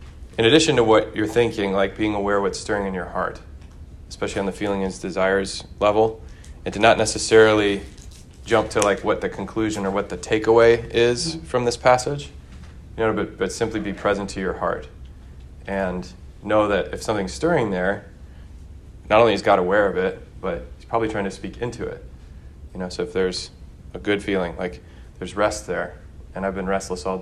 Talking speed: 195 wpm